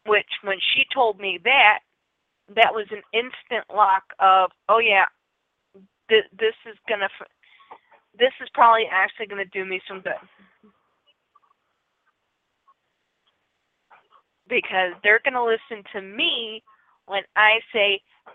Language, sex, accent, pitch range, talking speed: English, female, American, 195-230 Hz, 130 wpm